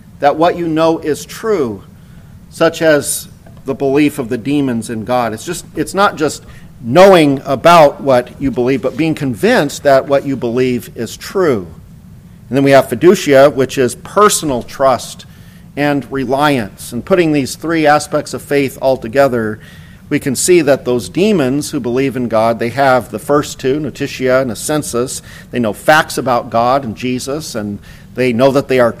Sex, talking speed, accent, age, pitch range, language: male, 180 wpm, American, 50-69, 125-150 Hz, English